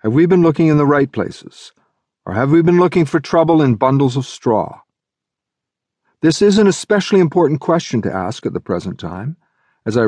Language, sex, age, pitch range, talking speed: English, male, 50-69, 100-145 Hz, 195 wpm